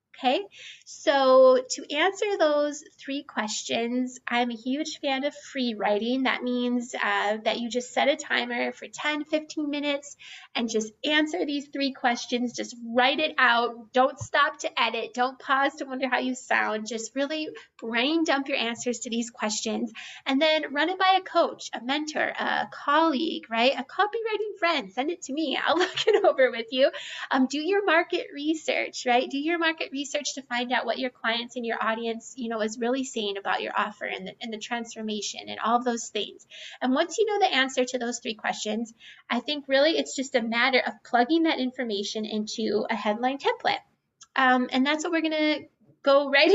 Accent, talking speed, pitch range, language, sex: American, 195 wpm, 235-305 Hz, English, female